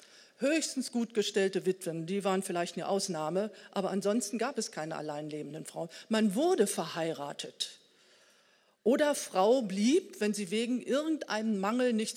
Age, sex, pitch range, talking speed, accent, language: 40-59, female, 190-235 Hz, 145 wpm, German, German